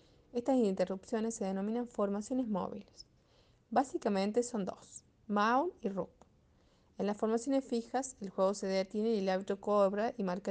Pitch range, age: 190-235 Hz, 30-49